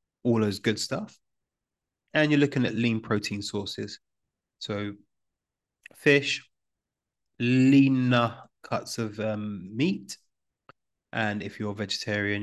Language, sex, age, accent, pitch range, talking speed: English, male, 30-49, British, 105-125 Hz, 110 wpm